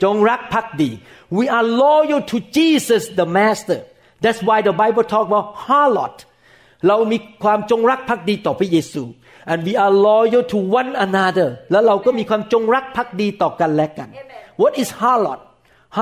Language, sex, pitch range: Thai, male, 175-225 Hz